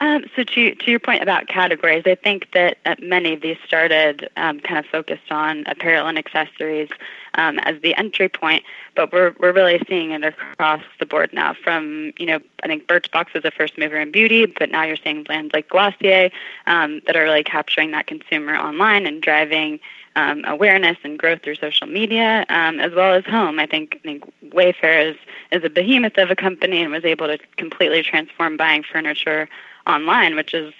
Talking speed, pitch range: 200 wpm, 155-190 Hz